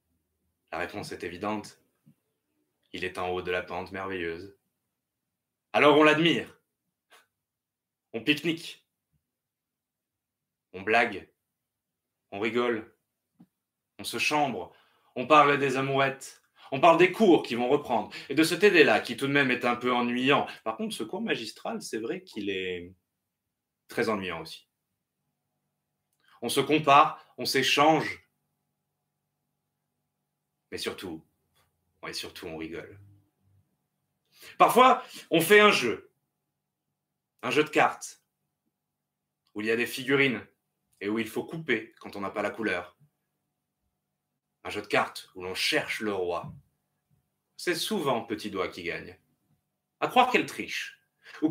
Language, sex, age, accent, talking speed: French, male, 20-39, French, 135 wpm